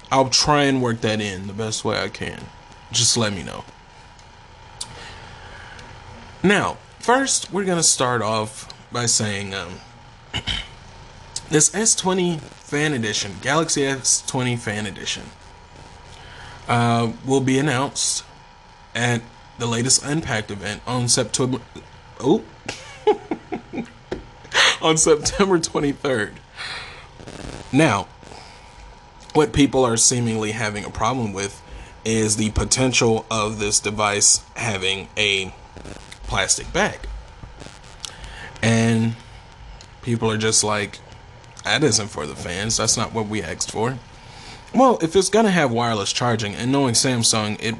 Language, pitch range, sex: English, 105-130 Hz, male